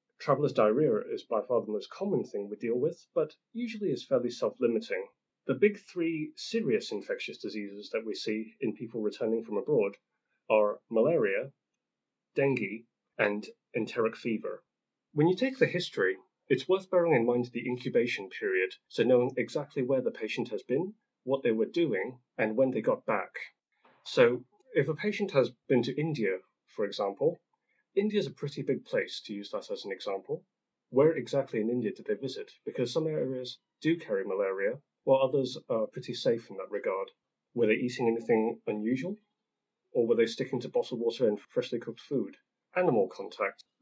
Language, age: English, 30-49